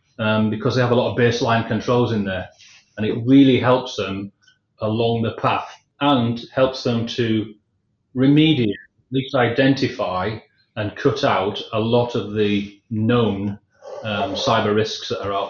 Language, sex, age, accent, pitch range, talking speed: English, male, 30-49, British, 110-135 Hz, 160 wpm